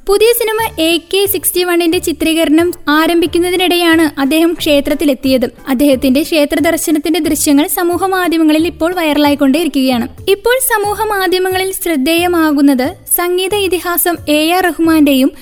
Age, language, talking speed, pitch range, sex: 20-39, Malayalam, 95 wpm, 295-370 Hz, female